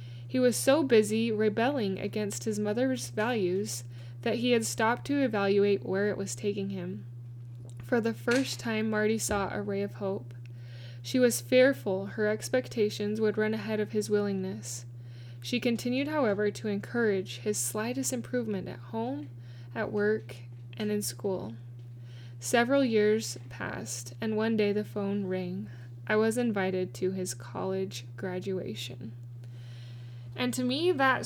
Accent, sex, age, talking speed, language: American, female, 10-29, 145 wpm, English